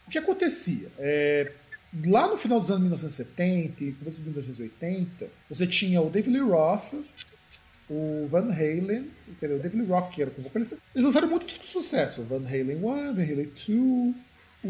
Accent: Brazilian